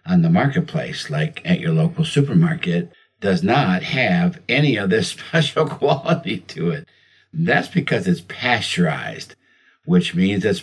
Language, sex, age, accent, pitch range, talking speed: English, male, 60-79, American, 100-165 Hz, 140 wpm